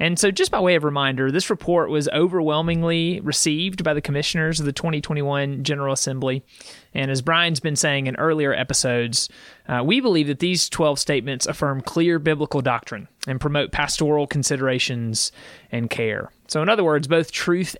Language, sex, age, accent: English, male, 30-49, American